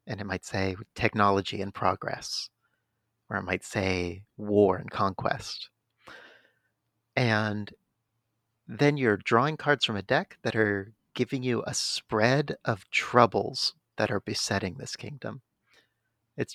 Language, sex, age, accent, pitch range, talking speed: English, male, 40-59, American, 100-120 Hz, 130 wpm